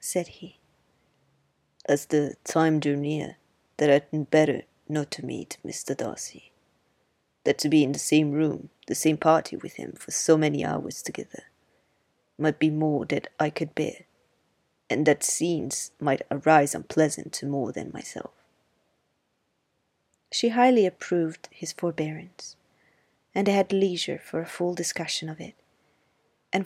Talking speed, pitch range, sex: 145 wpm, 155-190 Hz, female